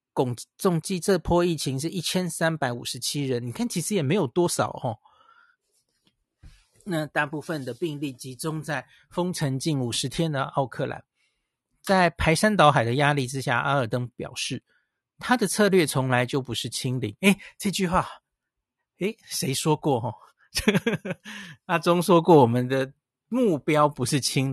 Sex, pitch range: male, 135-185 Hz